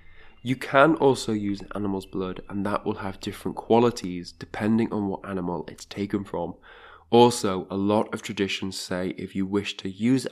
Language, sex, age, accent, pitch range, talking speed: English, male, 20-39, British, 95-110 Hz, 175 wpm